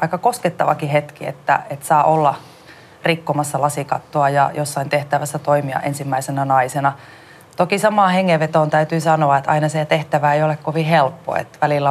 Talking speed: 150 wpm